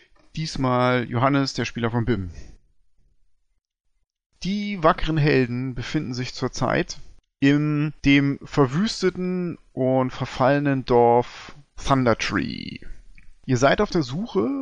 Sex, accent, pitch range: male, German, 125-160 Hz